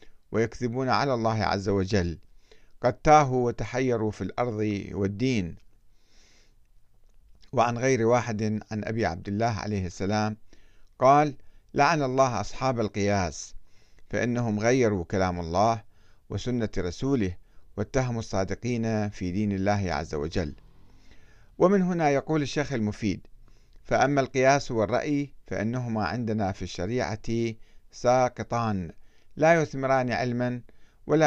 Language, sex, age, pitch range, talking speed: Arabic, male, 50-69, 100-125 Hz, 105 wpm